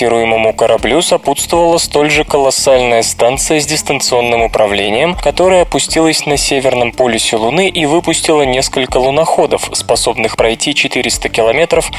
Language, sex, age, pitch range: Russian, male, 20-39, 120-155 Hz